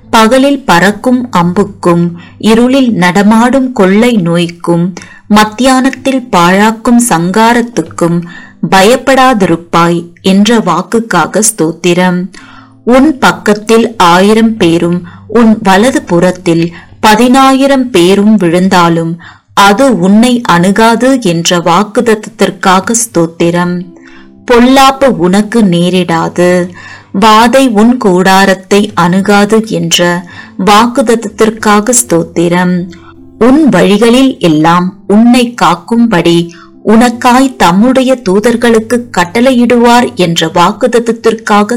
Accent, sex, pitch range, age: native, female, 175-240 Hz, 30-49